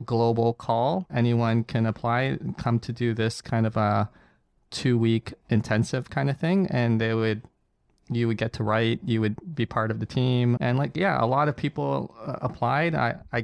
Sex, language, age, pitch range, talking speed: male, English, 20-39, 115-125 Hz, 190 wpm